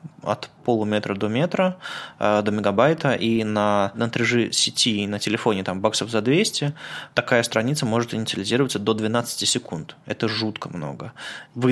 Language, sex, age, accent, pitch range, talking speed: Russian, male, 20-39, native, 105-125 Hz, 140 wpm